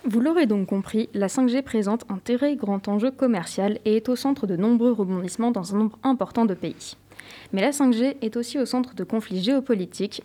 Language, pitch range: French, 195-245 Hz